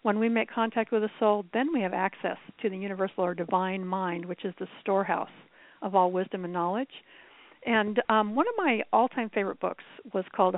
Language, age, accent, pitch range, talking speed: English, 50-69, American, 185-230 Hz, 205 wpm